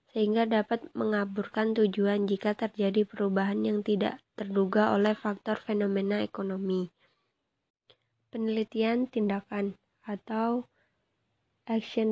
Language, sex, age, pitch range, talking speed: Indonesian, female, 20-39, 210-230 Hz, 90 wpm